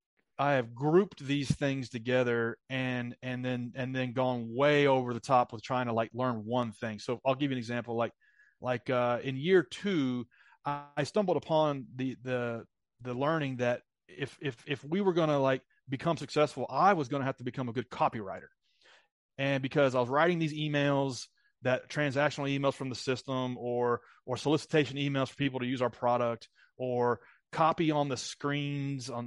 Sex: male